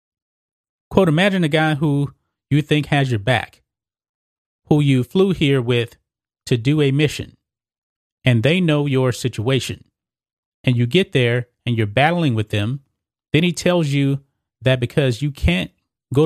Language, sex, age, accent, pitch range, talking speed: English, male, 30-49, American, 120-160 Hz, 155 wpm